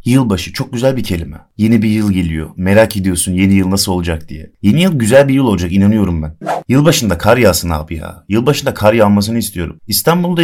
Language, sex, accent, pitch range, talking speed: Turkish, male, native, 90-115 Hz, 195 wpm